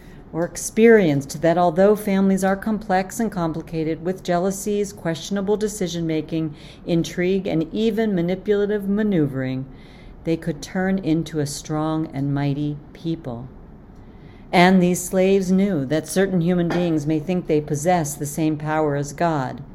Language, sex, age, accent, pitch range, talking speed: English, female, 50-69, American, 155-185 Hz, 135 wpm